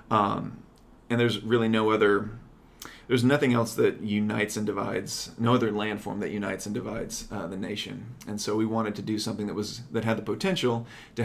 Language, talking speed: English, 195 wpm